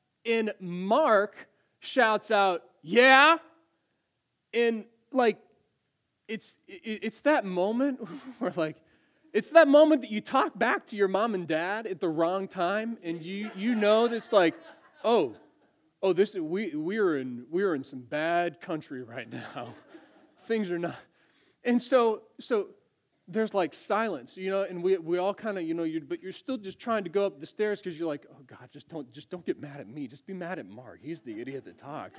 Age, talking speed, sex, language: 30-49, 190 wpm, male, English